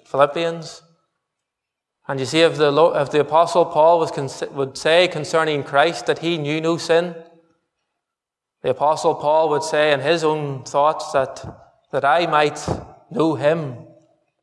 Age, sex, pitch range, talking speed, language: 20-39, male, 135-155 Hz, 145 wpm, English